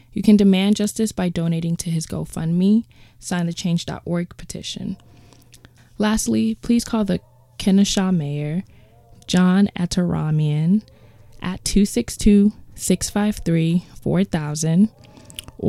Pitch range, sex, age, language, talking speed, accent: 160-200 Hz, female, 20-39, English, 90 wpm, American